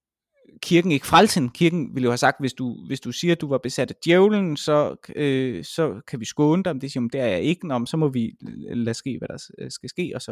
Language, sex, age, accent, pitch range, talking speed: Danish, male, 20-39, native, 130-200 Hz, 260 wpm